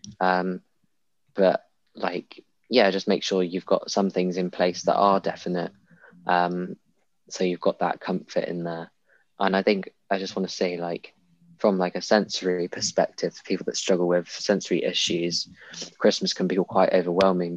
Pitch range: 90-95 Hz